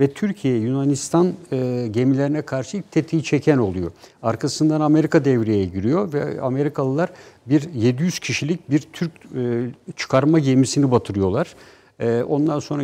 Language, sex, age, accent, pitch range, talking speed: Turkish, male, 60-79, native, 125-155 Hz, 125 wpm